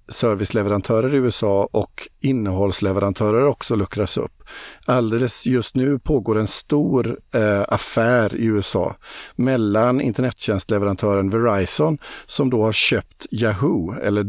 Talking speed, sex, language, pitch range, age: 110 wpm, male, Swedish, 105-125 Hz, 50-69